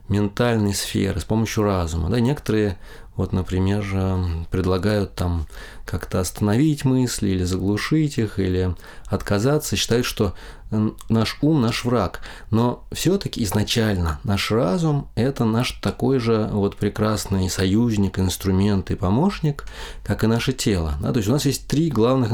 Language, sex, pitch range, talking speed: Russian, male, 95-125 Hz, 130 wpm